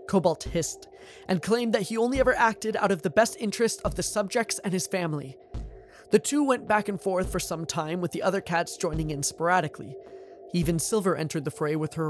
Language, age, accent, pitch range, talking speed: English, 20-39, American, 155-225 Hz, 215 wpm